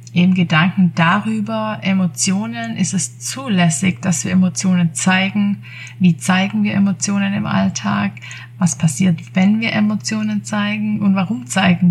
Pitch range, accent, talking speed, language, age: 130-190 Hz, German, 130 wpm, German, 20-39